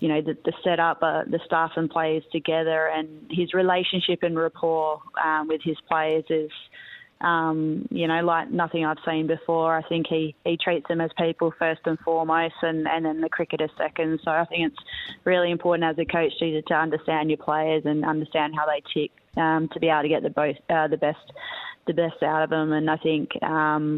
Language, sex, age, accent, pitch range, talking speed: English, female, 20-39, Australian, 150-165 Hz, 215 wpm